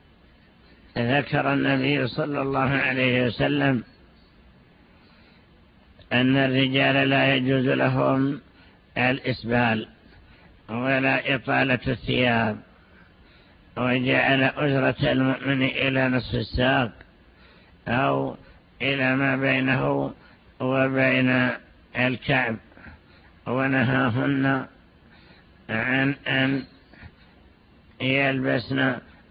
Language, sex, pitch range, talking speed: Arabic, male, 110-135 Hz, 65 wpm